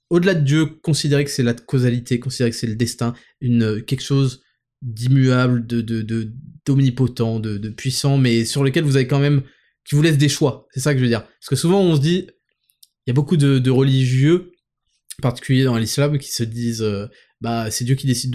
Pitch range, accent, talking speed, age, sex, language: 125-155 Hz, French, 220 wpm, 20-39, male, French